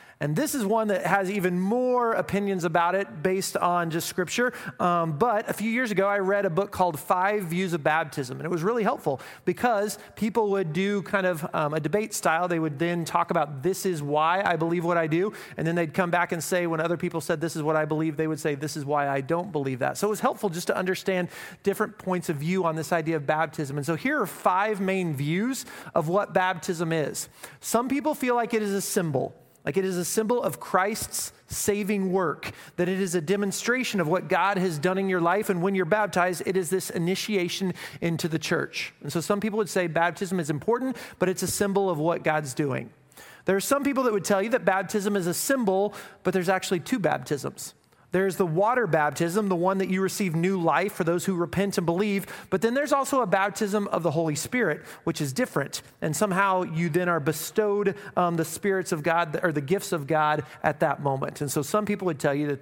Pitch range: 165-200 Hz